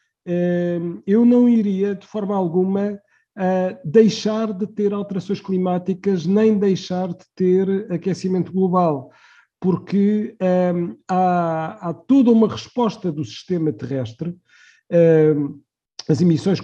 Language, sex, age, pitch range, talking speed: Portuguese, male, 50-69, 155-205 Hz, 100 wpm